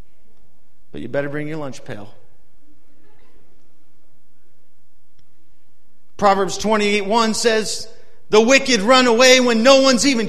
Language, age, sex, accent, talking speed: English, 40-59, male, American, 105 wpm